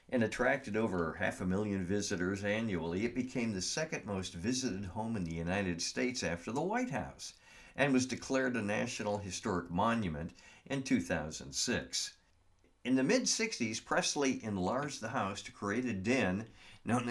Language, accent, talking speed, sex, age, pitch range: English, American, 155 wpm, male, 50-69, 90-130 Hz